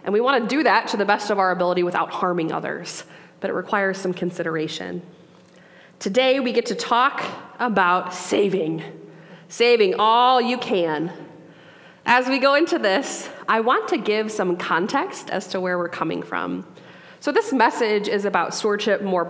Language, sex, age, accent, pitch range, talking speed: English, female, 20-39, American, 175-220 Hz, 170 wpm